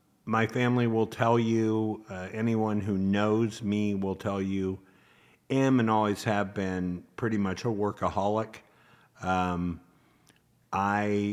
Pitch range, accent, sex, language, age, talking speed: 90-105 Hz, American, male, English, 50-69, 125 wpm